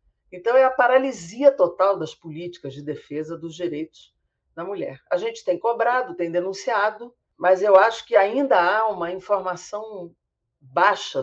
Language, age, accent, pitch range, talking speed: Portuguese, 50-69, Brazilian, 165-230 Hz, 150 wpm